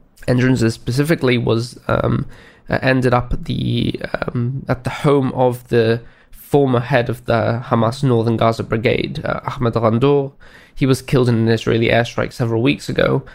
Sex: male